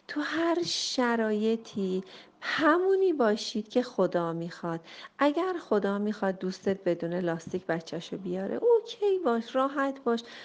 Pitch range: 180-280 Hz